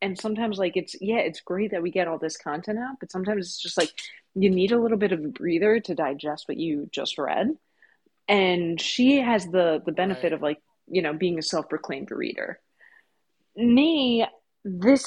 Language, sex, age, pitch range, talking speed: English, female, 30-49, 170-230 Hz, 195 wpm